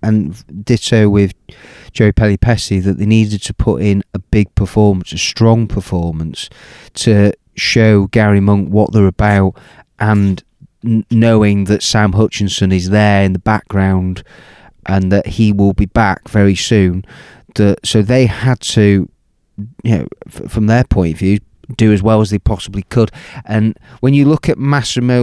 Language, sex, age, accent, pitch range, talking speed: English, male, 30-49, British, 100-115 Hz, 165 wpm